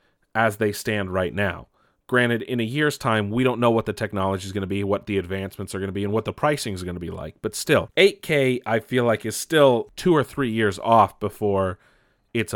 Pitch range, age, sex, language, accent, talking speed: 95-120 Hz, 30-49, male, English, American, 245 wpm